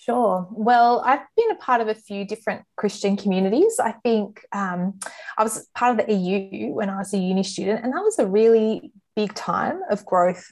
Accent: Australian